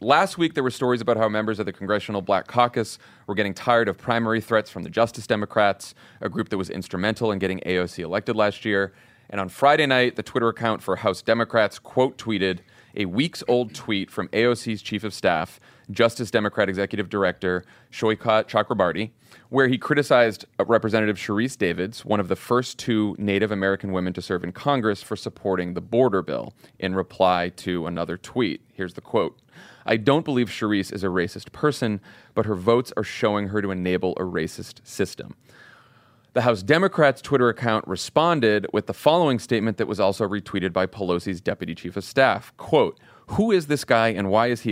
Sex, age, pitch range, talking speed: male, 30-49, 95-120 Hz, 190 wpm